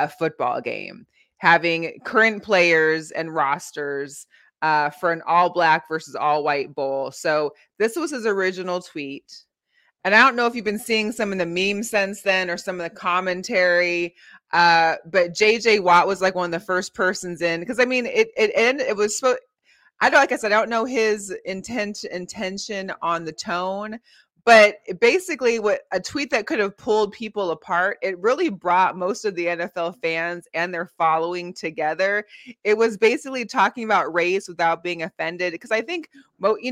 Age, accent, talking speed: 20-39, American, 185 wpm